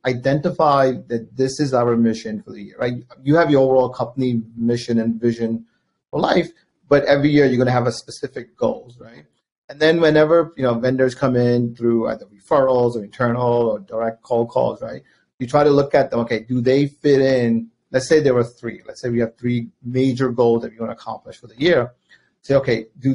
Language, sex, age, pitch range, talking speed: English, male, 30-49, 115-135 Hz, 215 wpm